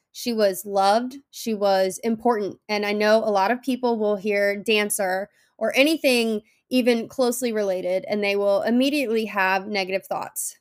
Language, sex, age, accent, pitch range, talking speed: English, female, 20-39, American, 205-240 Hz, 160 wpm